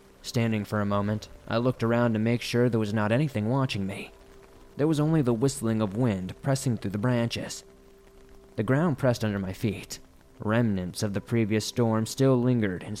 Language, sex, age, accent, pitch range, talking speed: English, male, 20-39, American, 100-125 Hz, 190 wpm